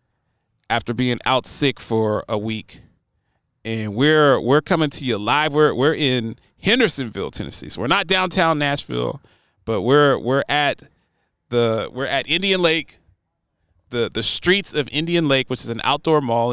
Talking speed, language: 160 wpm, English